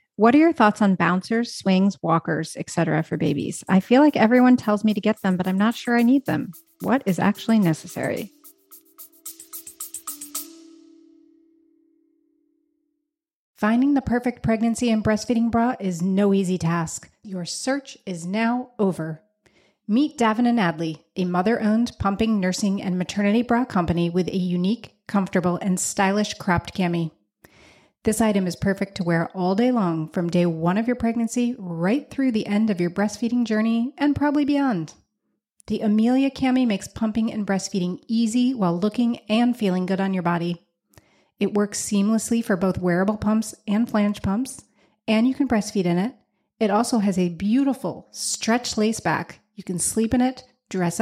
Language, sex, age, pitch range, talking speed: English, female, 30-49, 185-245 Hz, 165 wpm